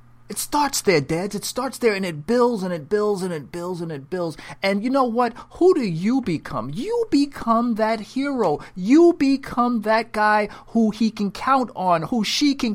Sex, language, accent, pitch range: male, English, American, 145-240 Hz